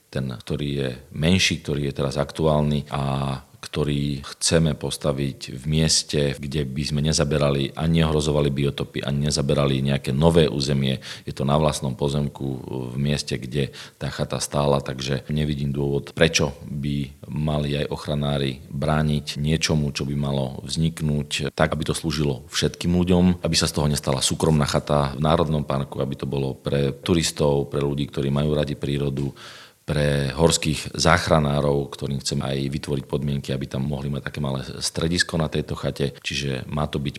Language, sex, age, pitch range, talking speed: Slovak, male, 40-59, 70-75 Hz, 160 wpm